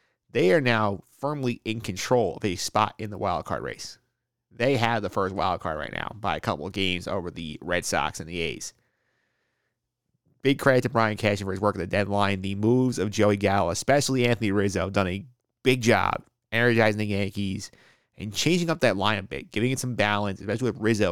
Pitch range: 100-120 Hz